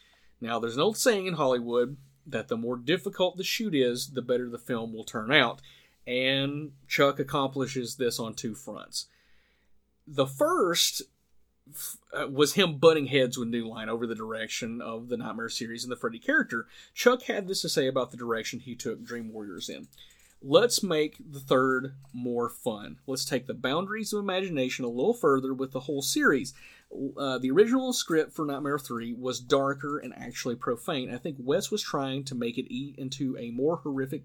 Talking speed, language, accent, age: 185 wpm, English, American, 30-49